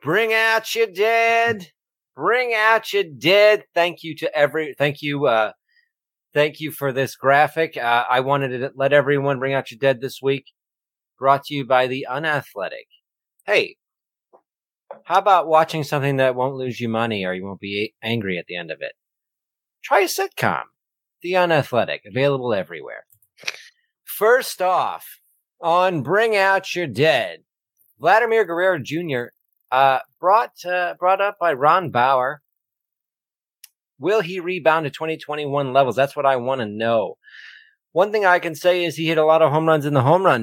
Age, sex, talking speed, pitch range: 30-49, male, 165 wpm, 135-175 Hz